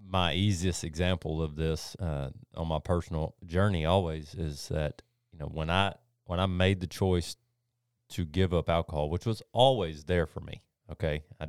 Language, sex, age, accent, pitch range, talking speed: English, male, 30-49, American, 80-95 Hz, 180 wpm